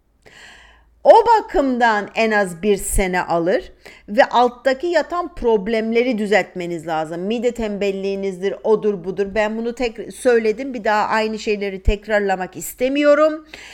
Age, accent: 50-69, native